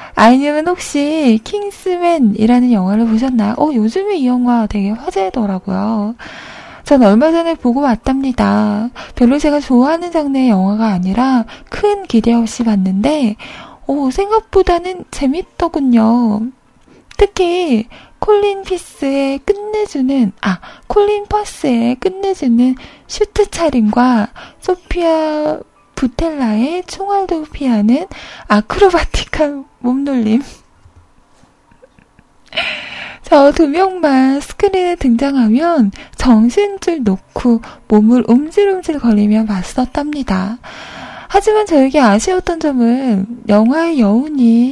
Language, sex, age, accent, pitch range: Korean, female, 20-39, native, 230-335 Hz